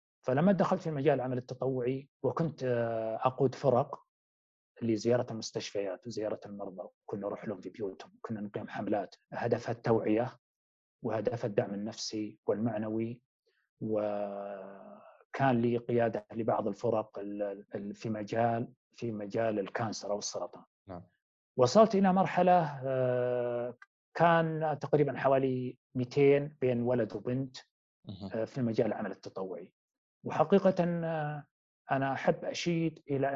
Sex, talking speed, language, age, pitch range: male, 105 wpm, Arabic, 30-49, 110-135 Hz